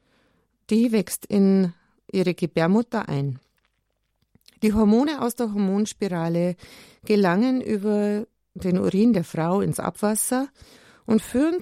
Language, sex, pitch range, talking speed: German, female, 170-220 Hz, 110 wpm